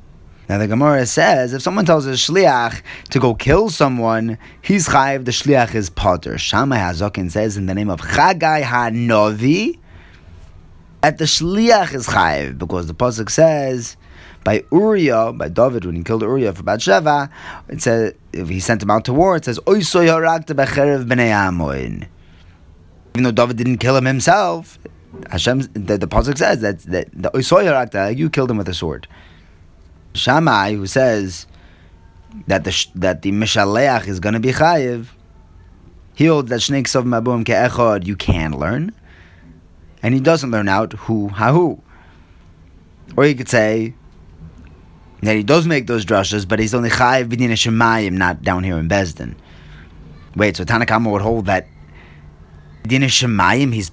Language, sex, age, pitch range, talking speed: English, male, 30-49, 85-125 Hz, 150 wpm